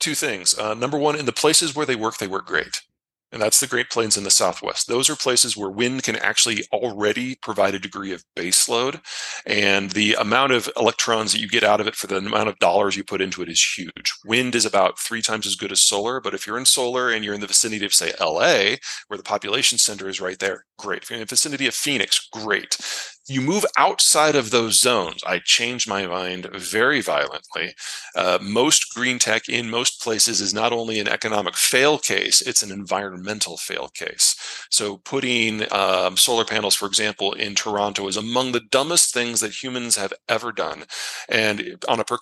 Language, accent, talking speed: English, American, 215 wpm